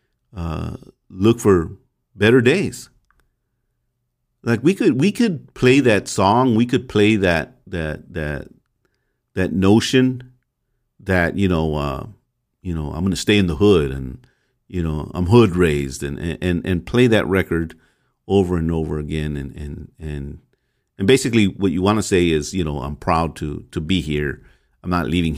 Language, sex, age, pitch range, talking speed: English, male, 50-69, 80-115 Hz, 170 wpm